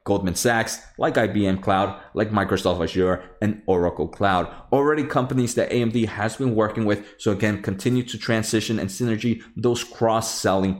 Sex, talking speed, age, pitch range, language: male, 155 wpm, 20-39, 105-130 Hz, English